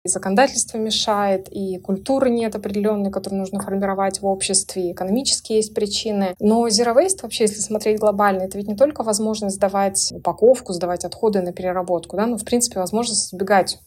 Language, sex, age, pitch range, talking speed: Russian, female, 20-39, 185-215 Hz, 175 wpm